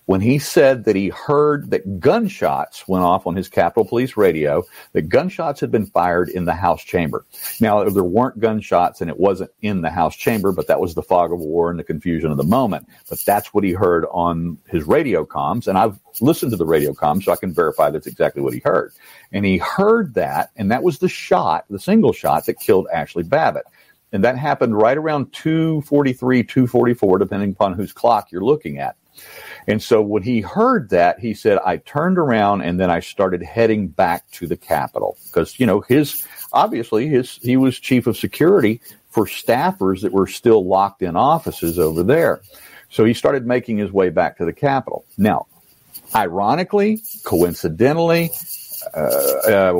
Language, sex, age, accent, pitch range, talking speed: English, male, 50-69, American, 95-145 Hz, 190 wpm